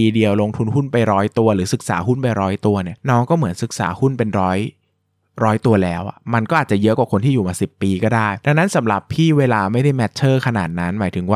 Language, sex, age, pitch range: Thai, male, 20-39, 105-140 Hz